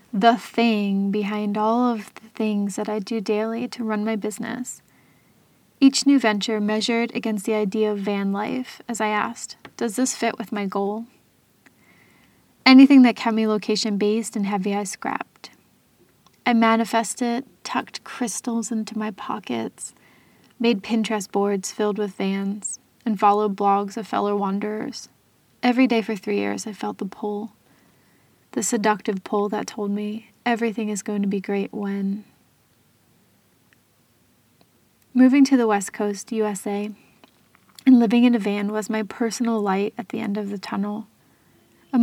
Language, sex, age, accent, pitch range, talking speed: English, female, 20-39, American, 205-235 Hz, 150 wpm